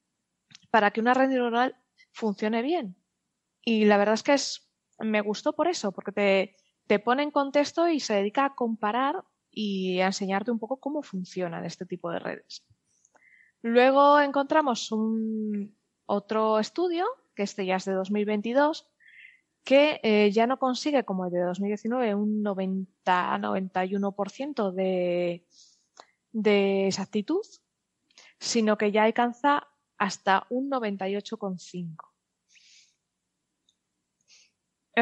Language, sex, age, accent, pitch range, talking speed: Spanish, female, 20-39, Spanish, 195-245 Hz, 115 wpm